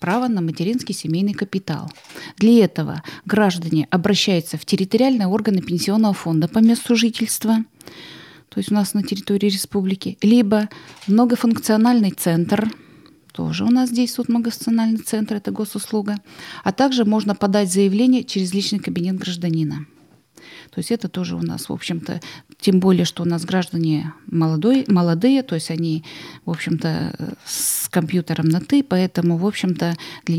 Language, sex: Russian, female